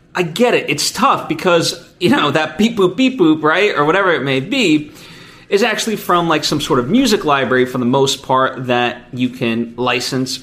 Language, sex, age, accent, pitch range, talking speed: English, male, 30-49, American, 125-170 Hz, 205 wpm